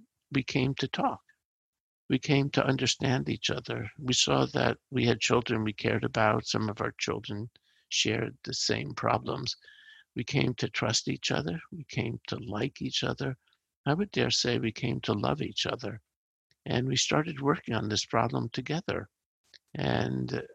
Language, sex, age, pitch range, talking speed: English, male, 50-69, 110-140 Hz, 170 wpm